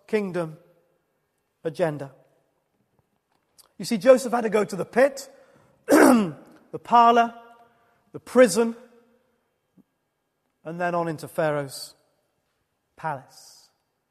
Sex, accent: male, British